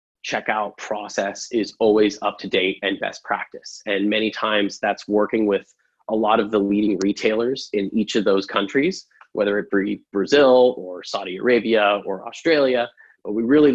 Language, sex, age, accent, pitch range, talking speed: English, male, 30-49, American, 100-125 Hz, 170 wpm